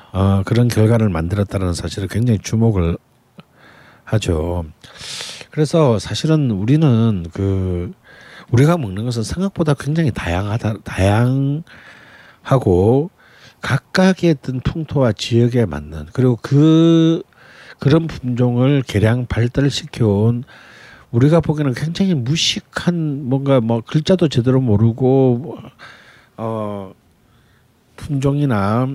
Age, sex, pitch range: 50-69, male, 100-135 Hz